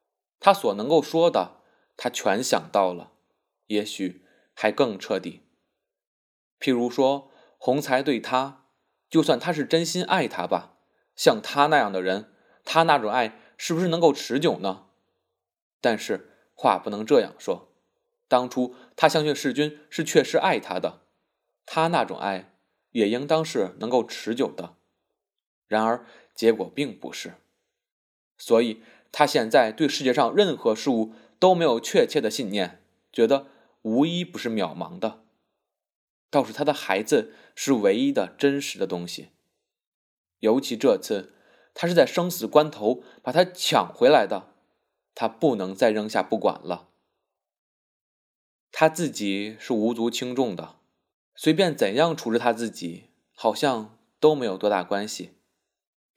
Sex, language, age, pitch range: male, Chinese, 20-39, 110-160 Hz